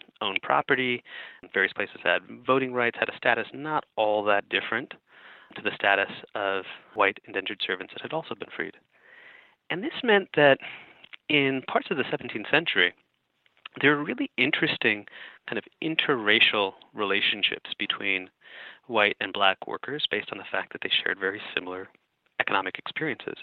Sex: male